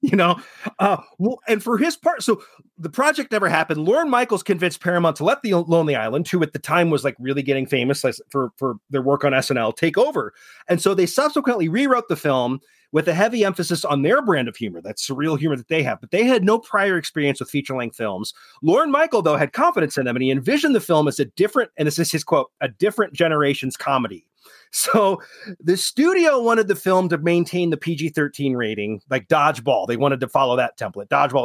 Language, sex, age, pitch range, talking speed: English, male, 30-49, 140-195 Hz, 220 wpm